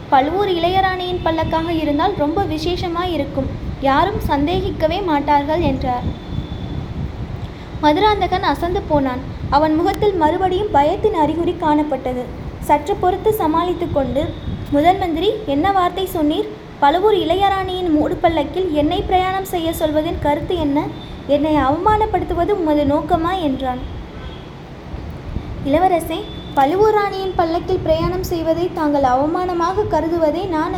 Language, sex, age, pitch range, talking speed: Tamil, female, 20-39, 300-370 Hz, 100 wpm